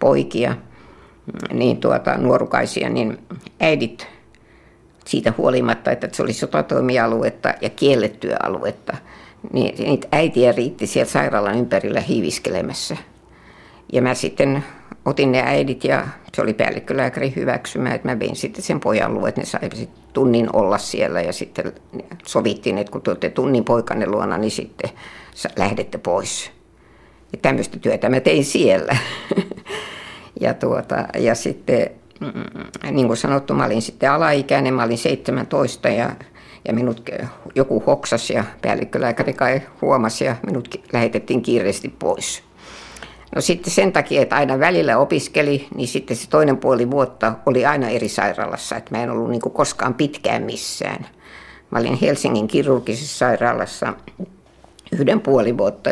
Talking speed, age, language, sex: 135 wpm, 60-79, Finnish, female